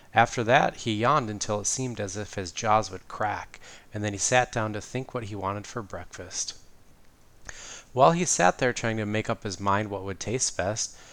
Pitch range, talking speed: 95-120 Hz, 210 wpm